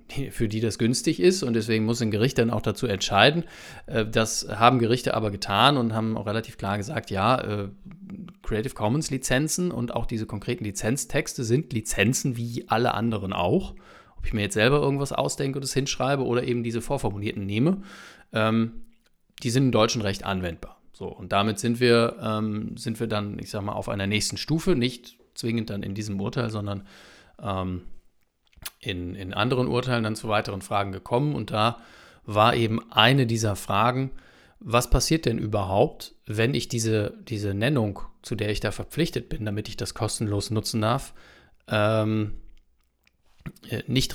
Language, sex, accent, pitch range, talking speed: German, male, German, 105-130 Hz, 165 wpm